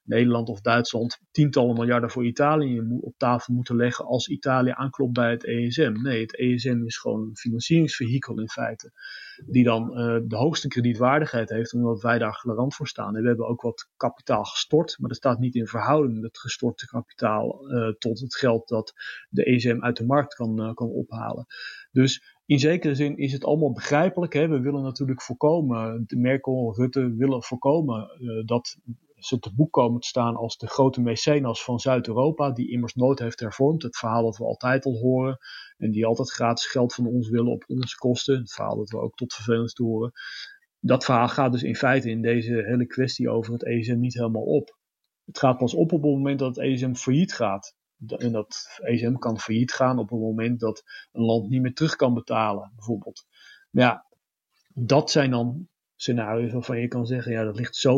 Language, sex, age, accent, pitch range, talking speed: English, male, 40-59, Dutch, 115-130 Hz, 200 wpm